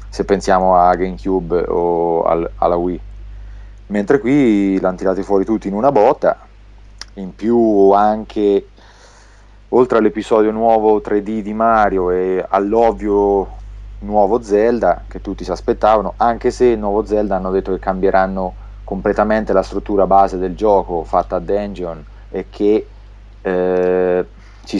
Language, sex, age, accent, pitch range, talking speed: English, male, 30-49, Italian, 95-105 Hz, 130 wpm